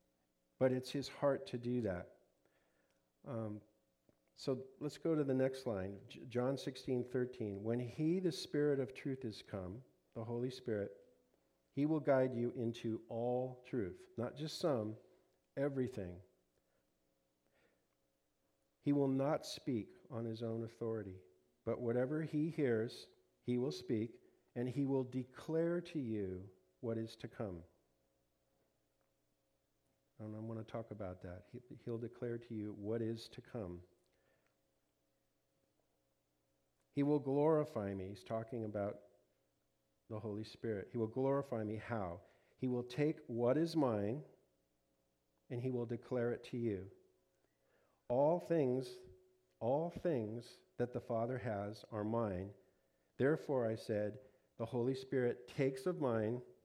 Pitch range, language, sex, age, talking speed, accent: 90-130 Hz, English, male, 50-69, 140 wpm, American